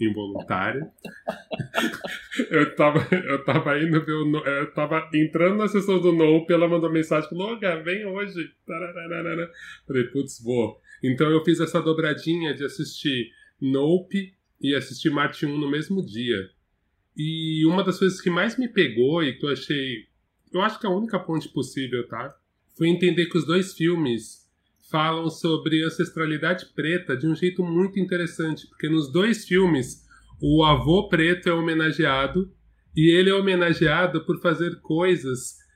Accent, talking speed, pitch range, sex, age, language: Brazilian, 145 wpm, 140-175 Hz, male, 20-39, English